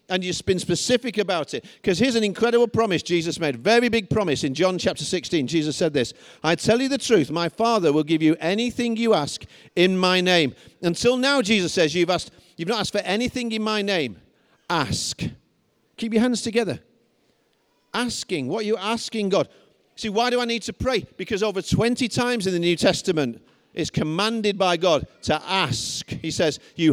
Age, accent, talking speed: 50-69, British, 195 wpm